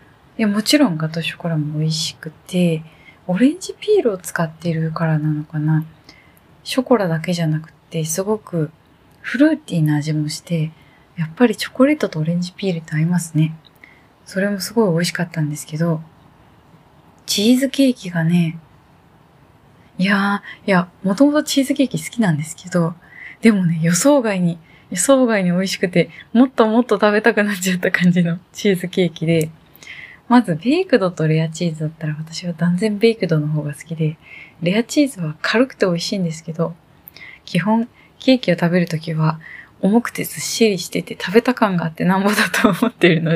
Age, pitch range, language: 20-39, 160-220 Hz, Japanese